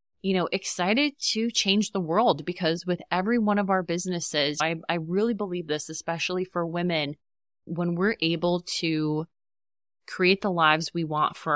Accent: American